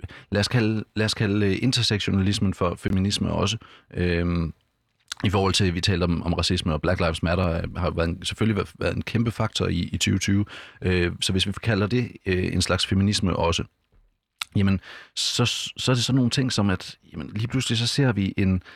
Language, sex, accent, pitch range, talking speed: Danish, male, native, 90-110 Hz, 195 wpm